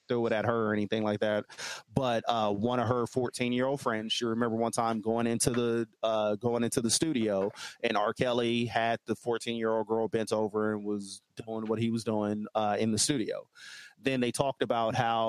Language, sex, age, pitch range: English, male, 30-49, 110-125 Hz